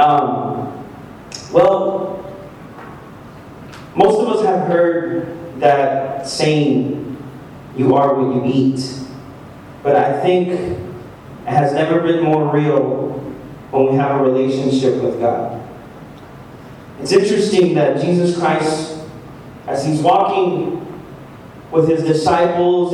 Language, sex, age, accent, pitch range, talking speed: English, male, 30-49, American, 140-180 Hz, 105 wpm